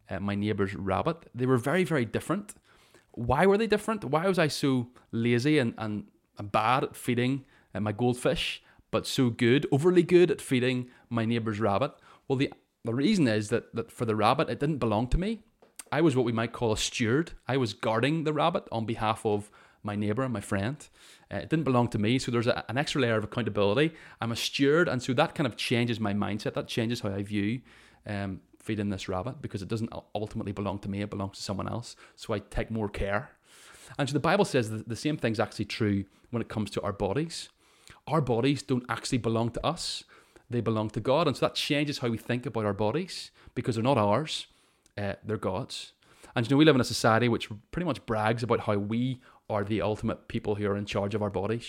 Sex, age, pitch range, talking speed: male, 30-49, 105-130 Hz, 225 wpm